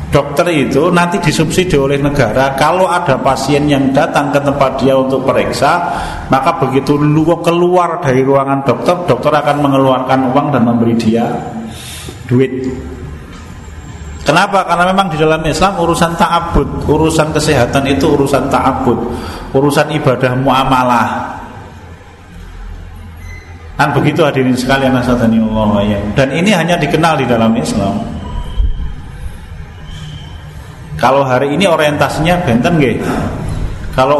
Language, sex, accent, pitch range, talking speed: Indonesian, male, native, 125-170 Hz, 115 wpm